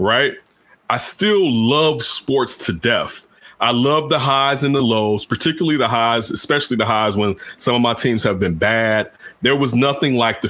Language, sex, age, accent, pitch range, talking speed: English, male, 30-49, American, 110-140 Hz, 190 wpm